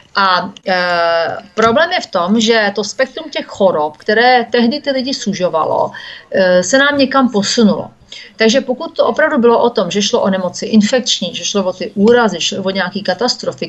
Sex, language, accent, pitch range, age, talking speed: female, Czech, native, 200-255 Hz, 40-59, 185 wpm